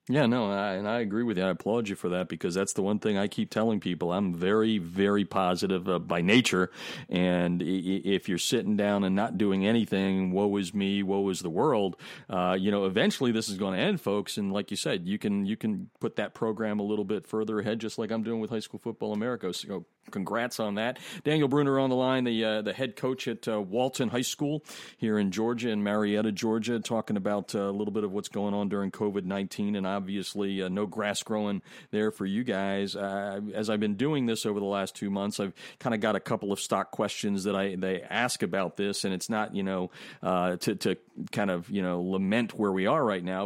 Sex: male